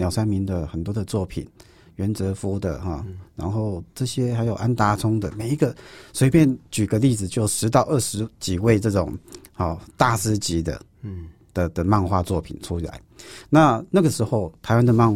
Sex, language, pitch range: male, Chinese, 95-120 Hz